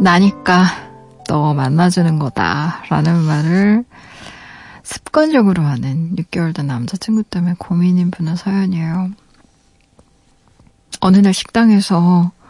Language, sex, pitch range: Korean, female, 170-210 Hz